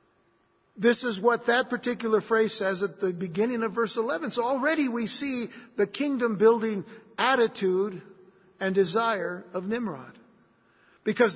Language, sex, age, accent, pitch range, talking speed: English, male, 60-79, American, 200-245 Hz, 135 wpm